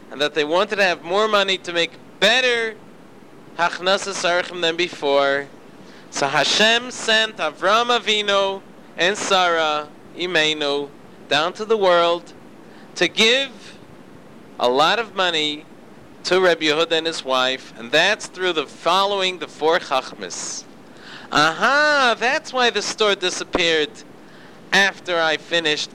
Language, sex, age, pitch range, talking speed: English, male, 40-59, 165-220 Hz, 125 wpm